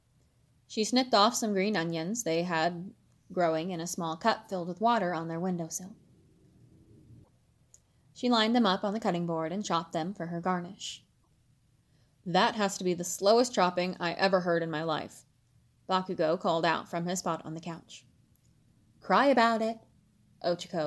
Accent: American